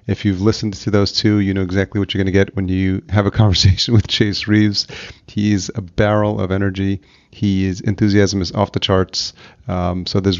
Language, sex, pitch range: English, male, 95-110 Hz